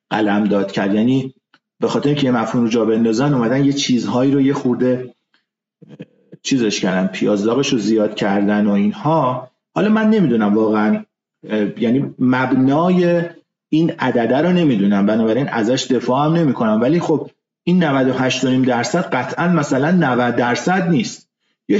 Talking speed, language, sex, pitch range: 140 wpm, Persian, male, 125-175 Hz